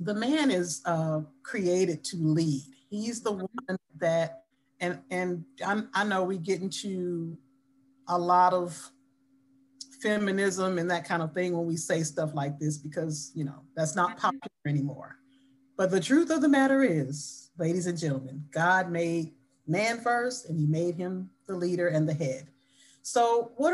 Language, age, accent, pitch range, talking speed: English, 40-59, American, 165-260 Hz, 165 wpm